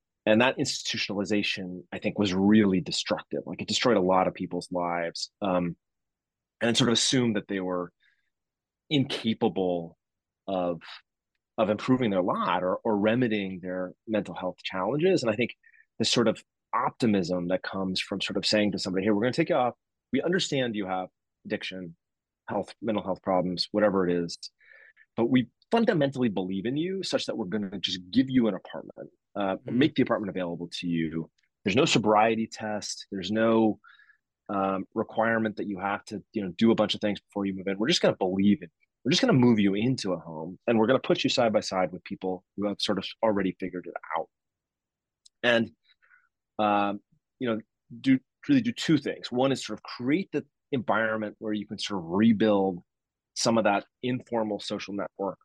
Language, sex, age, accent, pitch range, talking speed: English, male, 30-49, American, 95-115 Hz, 195 wpm